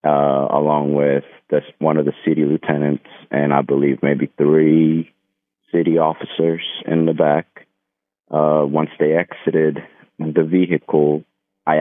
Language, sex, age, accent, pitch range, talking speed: English, male, 30-49, American, 70-80 Hz, 125 wpm